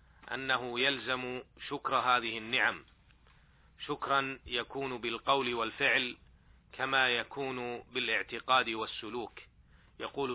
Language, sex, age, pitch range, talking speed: Arabic, male, 40-59, 115-135 Hz, 80 wpm